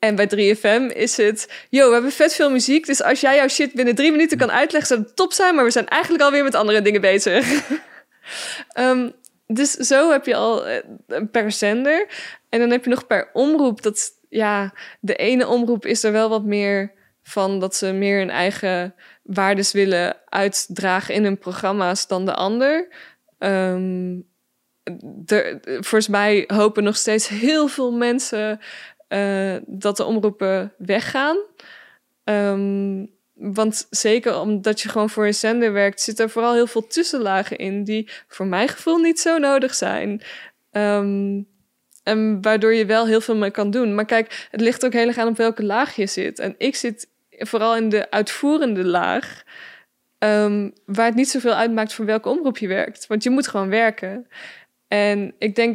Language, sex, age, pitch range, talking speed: Dutch, female, 20-39, 205-255 Hz, 180 wpm